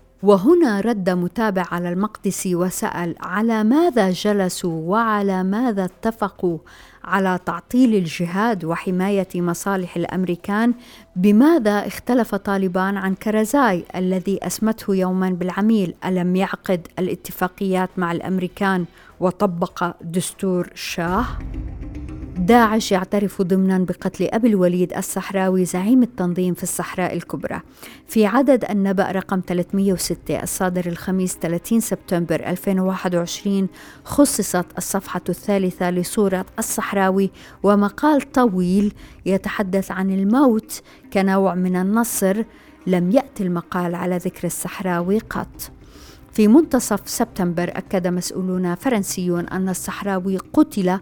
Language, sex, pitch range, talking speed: Arabic, female, 180-210 Hz, 100 wpm